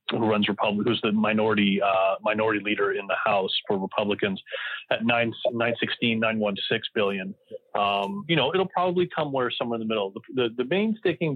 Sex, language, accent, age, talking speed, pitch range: male, English, American, 30-49, 185 wpm, 105-130 Hz